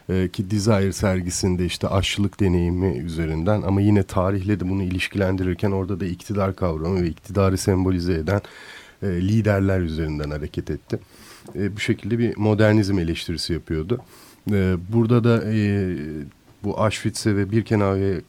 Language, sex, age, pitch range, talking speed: Turkish, male, 40-59, 90-105 Hz, 120 wpm